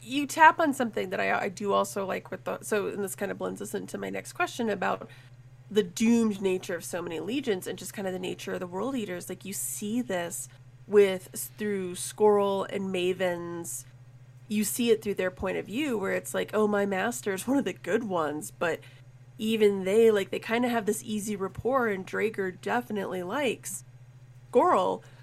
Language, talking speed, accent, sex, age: English, 205 wpm, American, female, 30-49